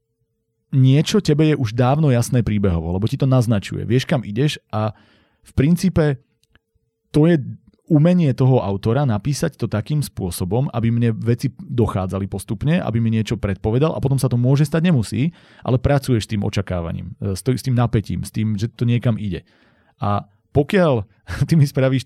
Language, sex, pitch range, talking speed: Slovak, male, 110-135 Hz, 165 wpm